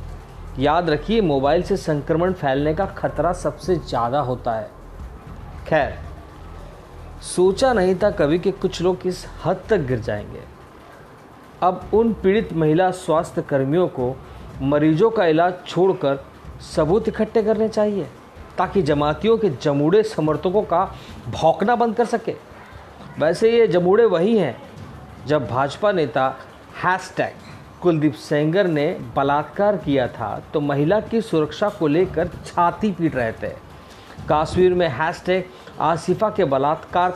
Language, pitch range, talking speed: Hindi, 140-195 Hz, 130 wpm